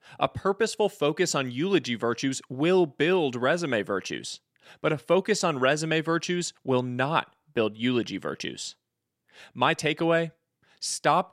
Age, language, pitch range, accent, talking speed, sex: 20-39, English, 120-165 Hz, American, 125 wpm, male